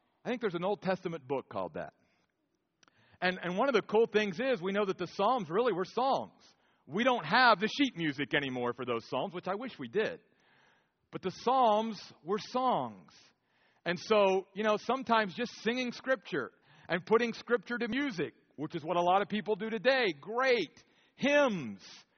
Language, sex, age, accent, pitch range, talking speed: English, male, 50-69, American, 175-240 Hz, 185 wpm